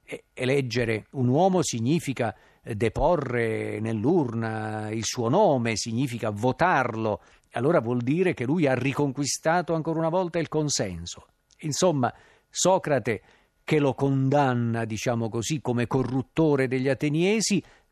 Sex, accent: male, native